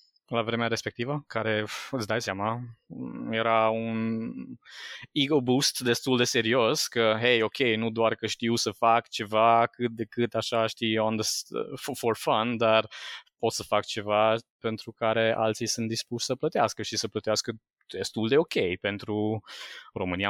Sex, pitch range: male, 105-120 Hz